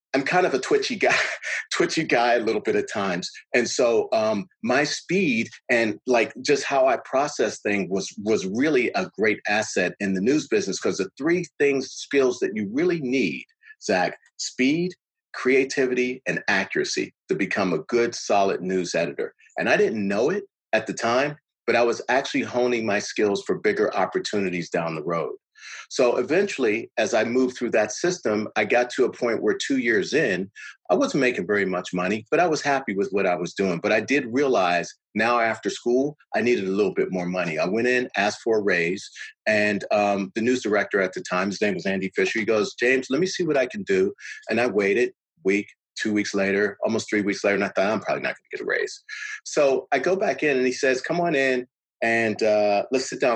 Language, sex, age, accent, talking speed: English, male, 40-59, American, 215 wpm